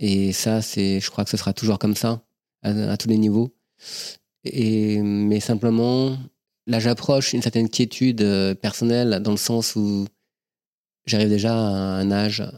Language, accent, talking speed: French, French, 160 wpm